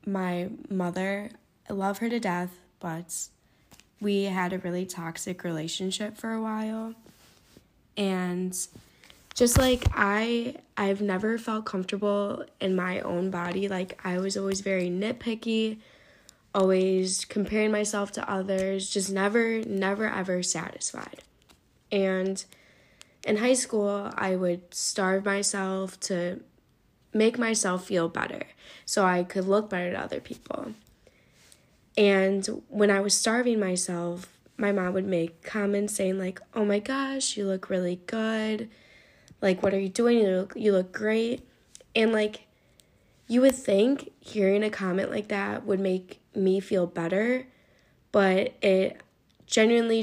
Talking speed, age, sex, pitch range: 135 wpm, 10-29, female, 185-215 Hz